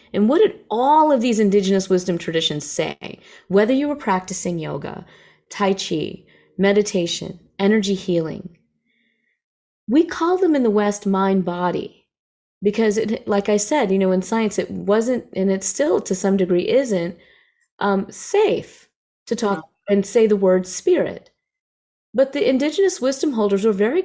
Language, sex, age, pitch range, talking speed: English, female, 30-49, 180-225 Hz, 155 wpm